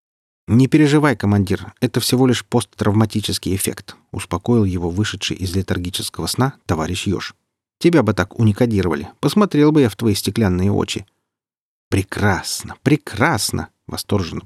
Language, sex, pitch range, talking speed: Russian, male, 95-125 Hz, 125 wpm